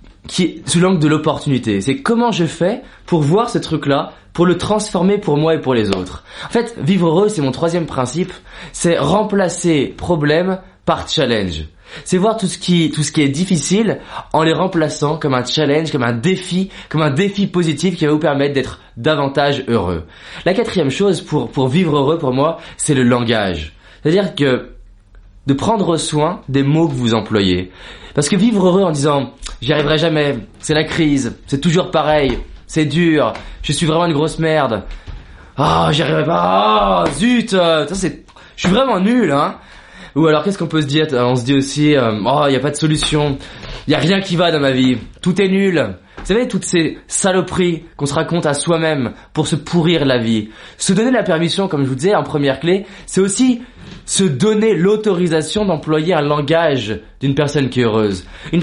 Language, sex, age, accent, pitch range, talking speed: French, male, 20-39, French, 140-185 Hz, 200 wpm